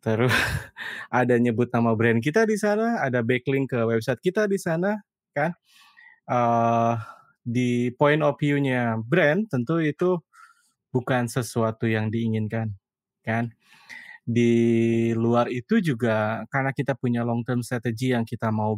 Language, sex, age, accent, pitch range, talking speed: Indonesian, male, 20-39, native, 115-145 Hz, 130 wpm